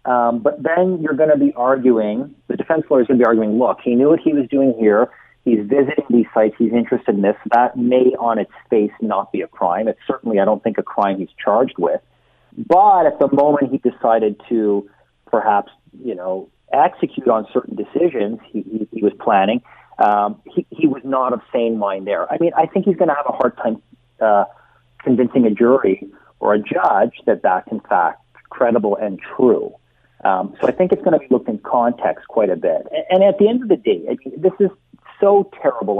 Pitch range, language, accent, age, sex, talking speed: 115-160 Hz, English, American, 40-59, male, 215 wpm